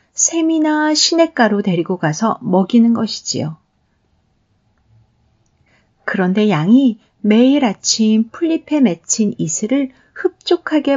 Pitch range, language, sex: 185-260 Hz, Korean, female